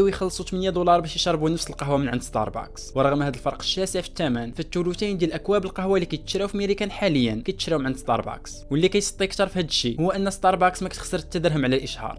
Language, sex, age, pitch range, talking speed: Arabic, male, 20-39, 130-185 Hz, 205 wpm